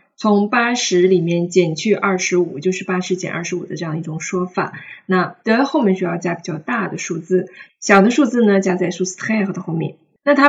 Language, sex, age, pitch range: Chinese, female, 20-39, 175-235 Hz